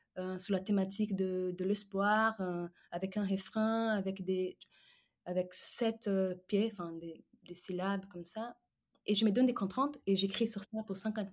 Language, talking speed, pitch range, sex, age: French, 180 wpm, 175-210 Hz, female, 20-39